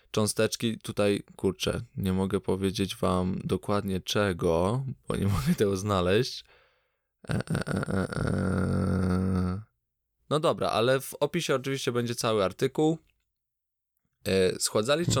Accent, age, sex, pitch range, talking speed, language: native, 20-39, male, 95-110 Hz, 95 wpm, Polish